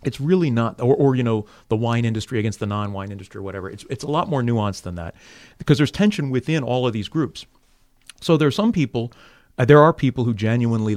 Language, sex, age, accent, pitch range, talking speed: English, male, 30-49, American, 100-125 Hz, 235 wpm